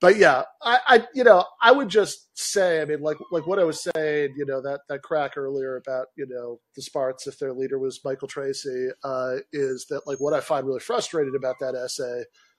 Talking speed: 225 wpm